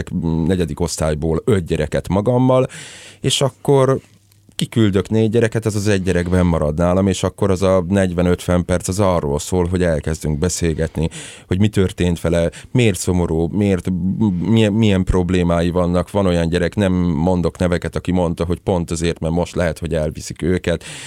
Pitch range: 85-105 Hz